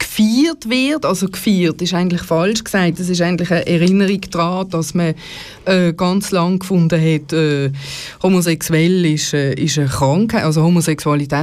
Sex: female